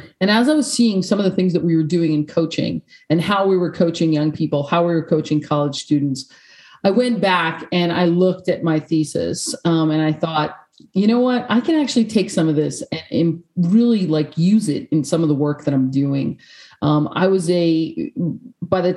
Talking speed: 225 wpm